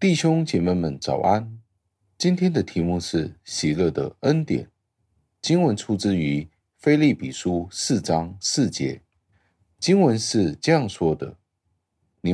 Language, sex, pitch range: Chinese, male, 80-105 Hz